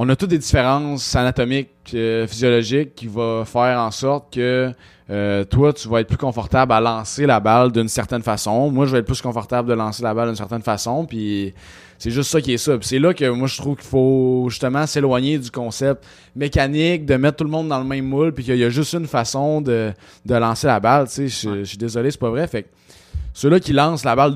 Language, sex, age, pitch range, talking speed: French, male, 20-39, 115-145 Hz, 245 wpm